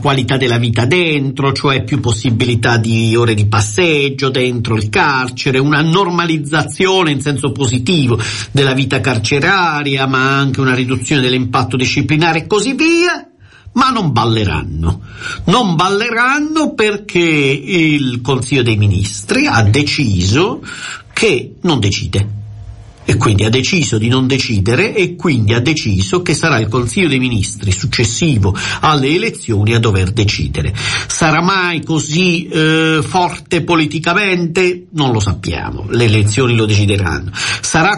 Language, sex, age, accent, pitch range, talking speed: Italian, male, 50-69, native, 120-180 Hz, 130 wpm